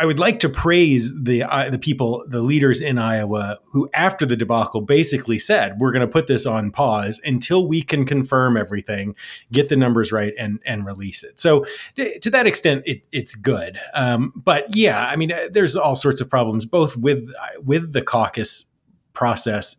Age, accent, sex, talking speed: 30-49, American, male, 190 wpm